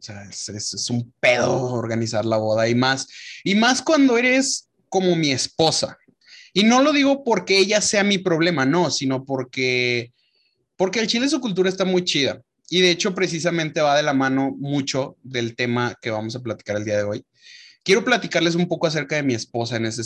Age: 30-49